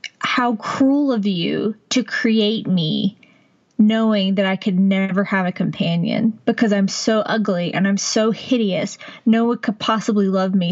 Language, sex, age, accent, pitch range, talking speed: English, female, 20-39, American, 195-235 Hz, 160 wpm